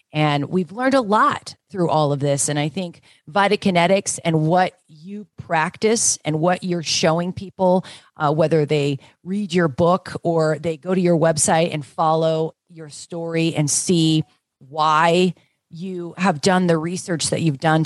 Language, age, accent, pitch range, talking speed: English, 40-59, American, 150-190 Hz, 165 wpm